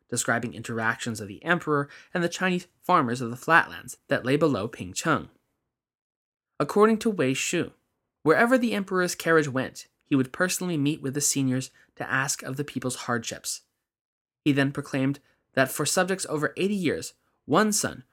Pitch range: 130-175 Hz